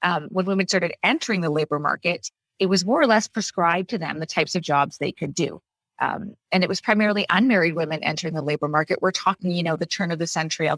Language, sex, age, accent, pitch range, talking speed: English, female, 30-49, American, 165-195 Hz, 245 wpm